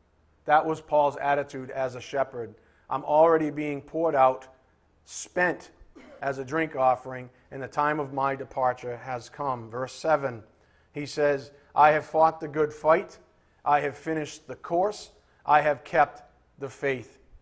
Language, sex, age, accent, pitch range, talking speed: English, male, 40-59, American, 130-165 Hz, 155 wpm